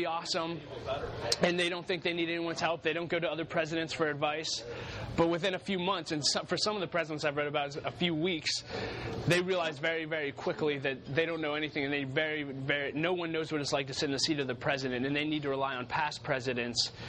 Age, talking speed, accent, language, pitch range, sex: 20-39, 245 wpm, American, English, 135-170 Hz, male